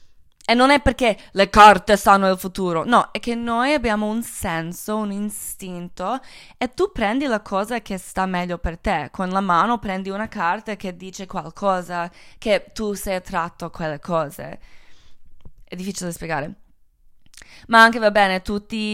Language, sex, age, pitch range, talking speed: Italian, female, 20-39, 185-220 Hz, 170 wpm